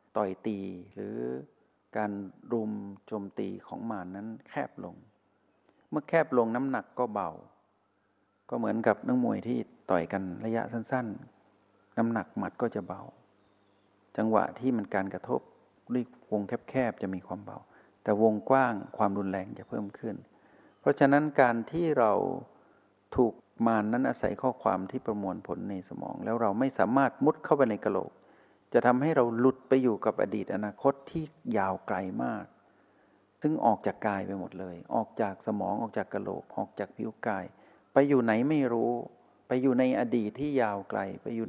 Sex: male